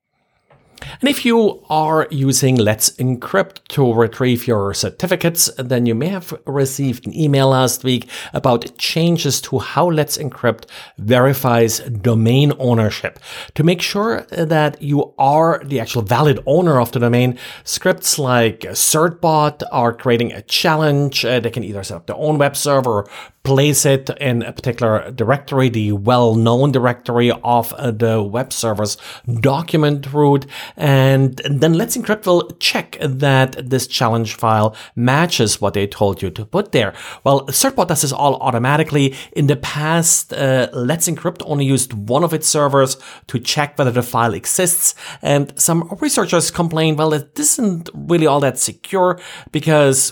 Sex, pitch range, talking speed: male, 120-155 Hz, 155 wpm